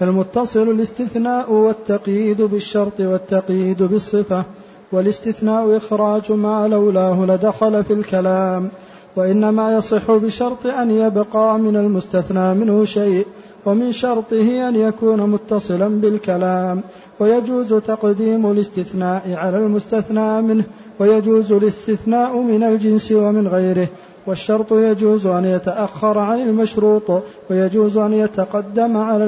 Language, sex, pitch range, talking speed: Arabic, male, 190-220 Hz, 100 wpm